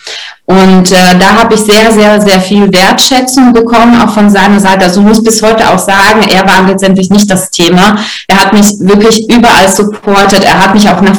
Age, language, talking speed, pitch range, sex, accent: 20-39, German, 210 wpm, 185-225 Hz, female, German